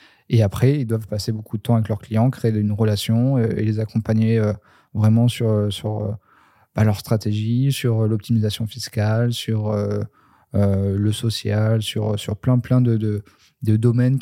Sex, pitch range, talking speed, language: male, 105-120 Hz, 175 wpm, French